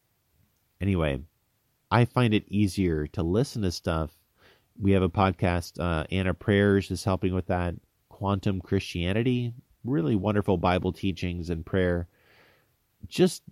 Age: 30-49